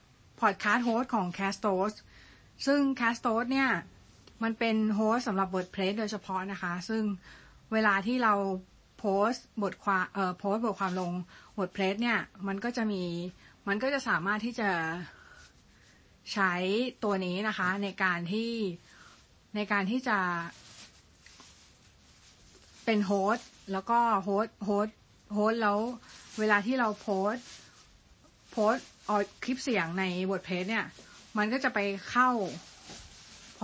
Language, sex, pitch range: Thai, female, 190-225 Hz